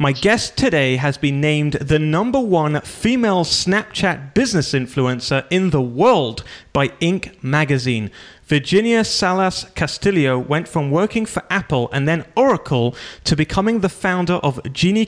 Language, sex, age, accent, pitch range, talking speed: English, male, 30-49, British, 130-185 Hz, 145 wpm